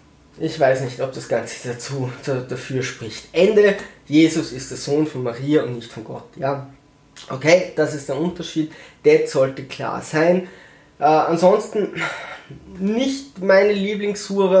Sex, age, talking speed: male, 20-39, 145 wpm